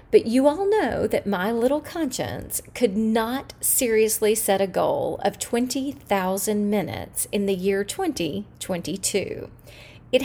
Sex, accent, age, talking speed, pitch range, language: female, American, 40-59, 130 wpm, 205-305 Hz, English